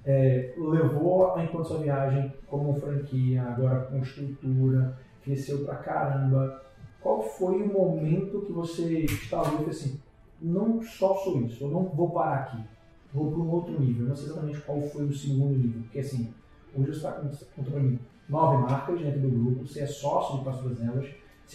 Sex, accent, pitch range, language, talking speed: male, Brazilian, 135-180 Hz, Portuguese, 180 wpm